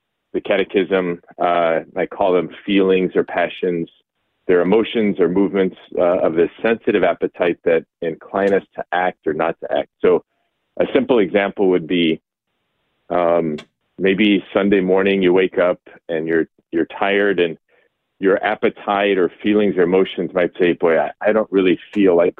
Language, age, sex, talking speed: English, 40-59, male, 160 wpm